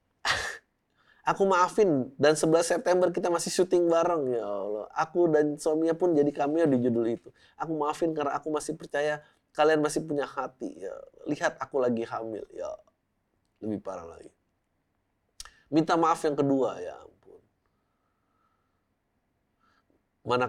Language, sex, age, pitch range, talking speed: Indonesian, male, 20-39, 115-150 Hz, 135 wpm